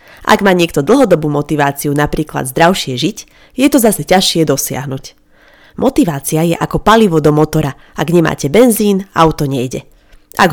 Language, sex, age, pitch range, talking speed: Slovak, female, 30-49, 150-200 Hz, 140 wpm